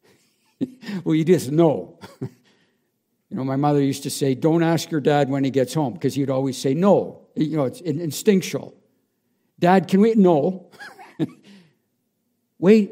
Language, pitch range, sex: English, 135-180 Hz, male